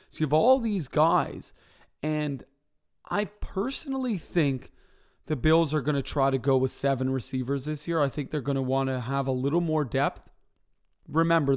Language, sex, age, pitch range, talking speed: English, male, 30-49, 130-155 Hz, 185 wpm